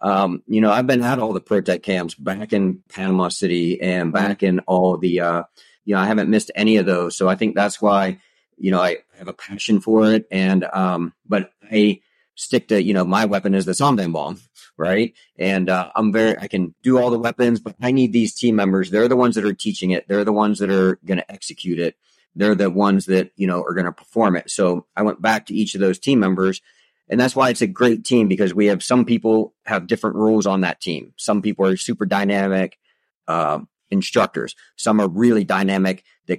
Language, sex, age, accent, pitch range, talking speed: English, male, 40-59, American, 95-110 Hz, 230 wpm